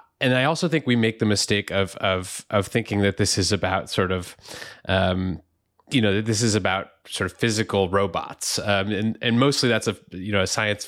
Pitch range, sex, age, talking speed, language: 95-115 Hz, male, 20-39, 215 wpm, English